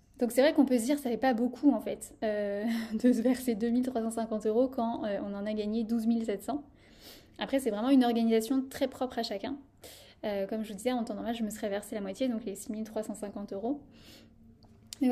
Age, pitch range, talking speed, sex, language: 10-29, 220-265 Hz, 220 wpm, female, French